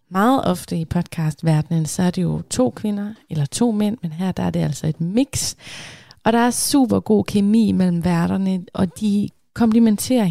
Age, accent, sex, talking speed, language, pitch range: 30-49, native, female, 185 wpm, Danish, 175-230 Hz